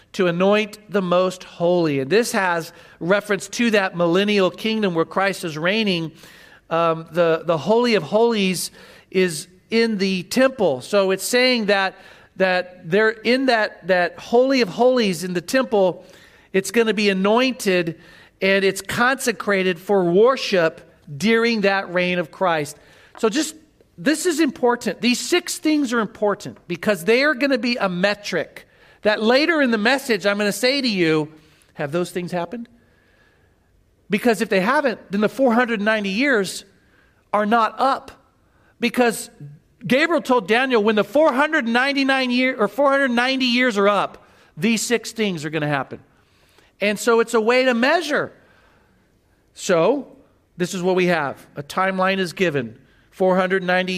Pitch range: 180-235 Hz